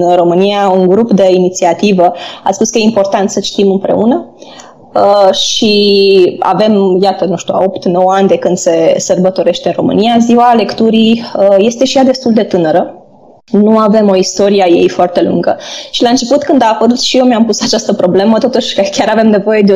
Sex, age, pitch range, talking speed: female, 20-39, 190-245 Hz, 185 wpm